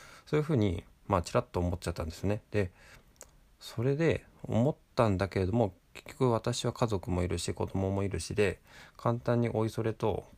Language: Japanese